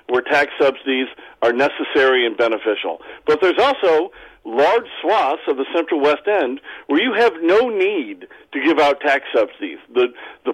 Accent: American